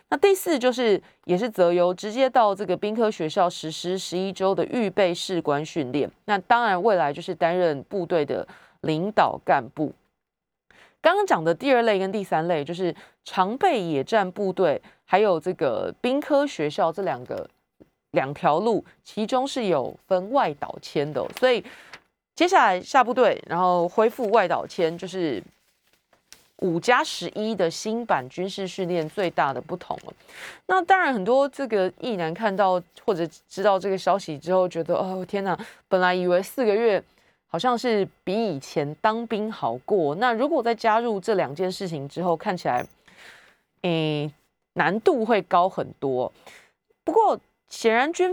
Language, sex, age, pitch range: Chinese, female, 30-49, 175-230 Hz